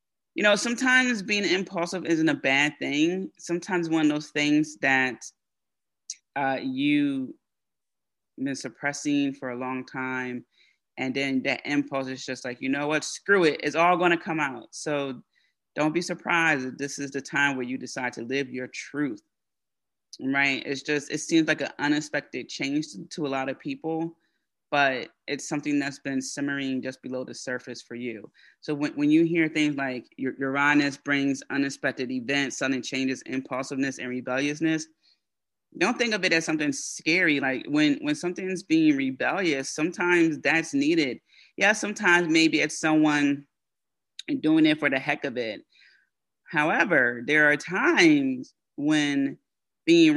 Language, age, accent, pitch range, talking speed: English, 30-49, American, 135-175 Hz, 160 wpm